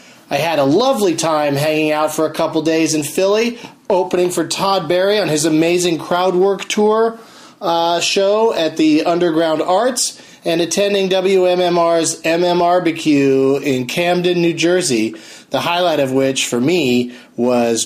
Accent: American